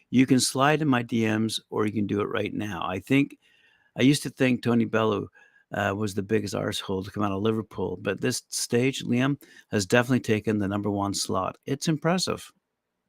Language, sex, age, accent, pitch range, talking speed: English, male, 50-69, American, 105-125 Hz, 200 wpm